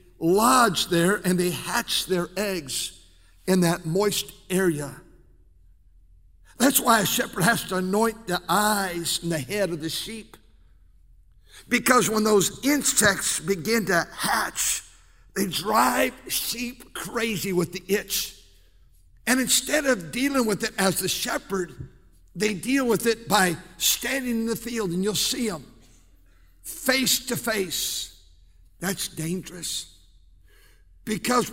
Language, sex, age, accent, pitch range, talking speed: English, male, 60-79, American, 150-225 Hz, 130 wpm